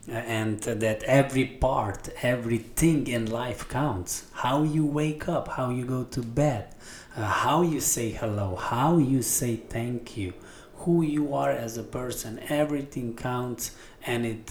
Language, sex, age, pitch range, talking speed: English, male, 30-49, 110-125 Hz, 155 wpm